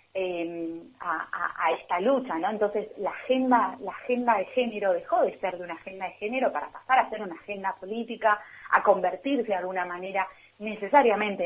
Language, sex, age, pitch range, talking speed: Spanish, female, 30-49, 175-220 Hz, 180 wpm